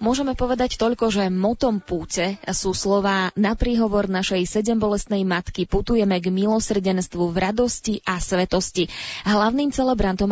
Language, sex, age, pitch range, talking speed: Slovak, female, 20-39, 185-215 Hz, 130 wpm